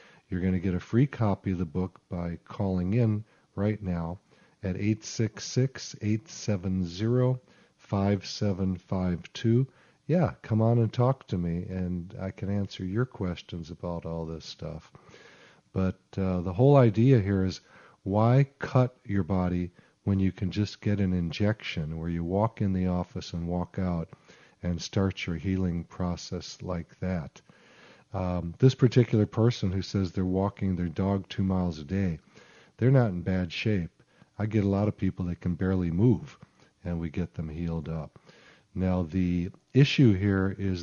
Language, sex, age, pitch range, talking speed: English, male, 50-69, 90-110 Hz, 160 wpm